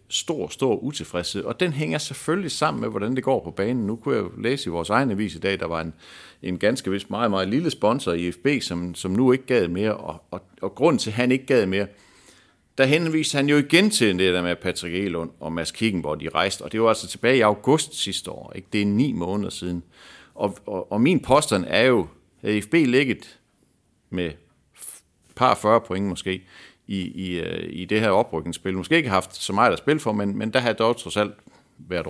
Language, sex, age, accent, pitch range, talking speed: Danish, male, 50-69, native, 90-130 Hz, 225 wpm